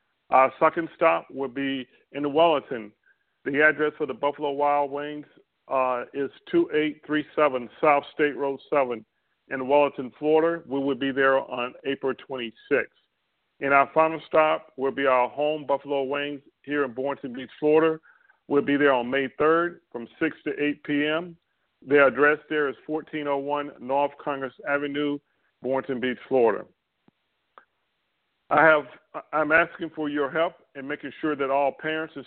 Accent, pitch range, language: American, 135-155 Hz, English